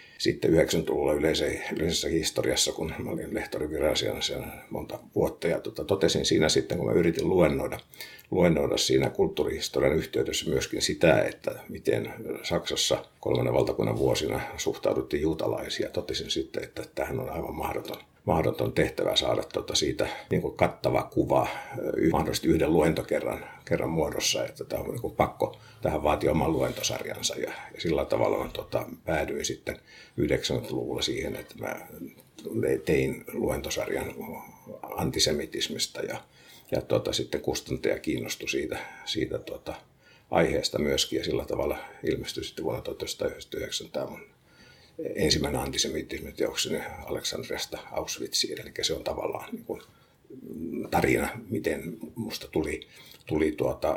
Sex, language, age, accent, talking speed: male, Finnish, 60-79, native, 120 wpm